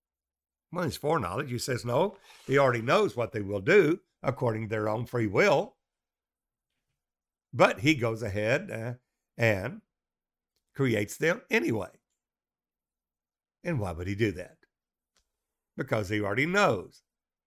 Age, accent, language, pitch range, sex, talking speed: 60-79, American, English, 100-140 Hz, male, 130 wpm